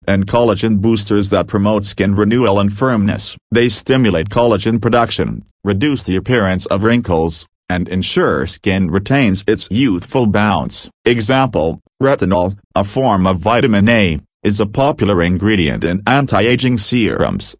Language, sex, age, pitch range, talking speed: English, male, 40-59, 95-120 Hz, 135 wpm